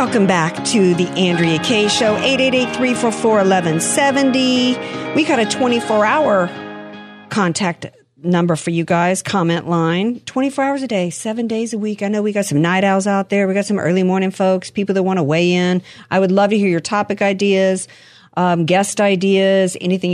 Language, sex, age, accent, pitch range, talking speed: English, female, 50-69, American, 150-200 Hz, 190 wpm